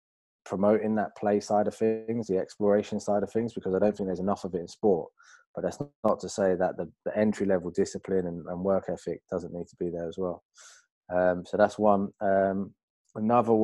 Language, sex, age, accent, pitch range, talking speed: English, male, 20-39, British, 90-110 Hz, 215 wpm